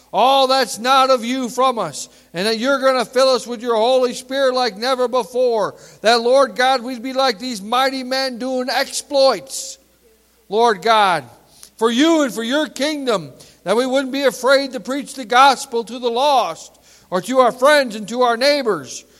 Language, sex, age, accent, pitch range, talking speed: English, male, 50-69, American, 215-265 Hz, 190 wpm